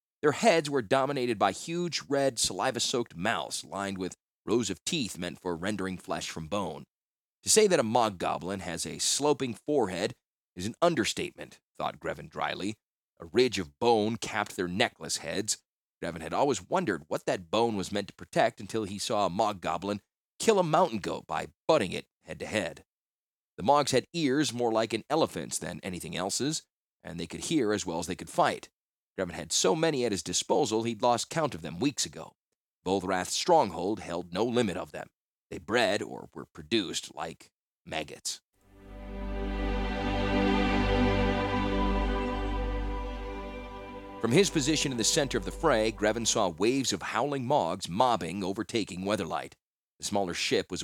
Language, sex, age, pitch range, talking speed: English, male, 30-49, 95-120 Hz, 165 wpm